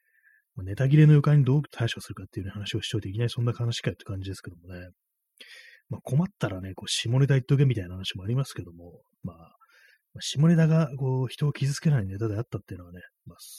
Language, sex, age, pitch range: Japanese, male, 30-49, 100-135 Hz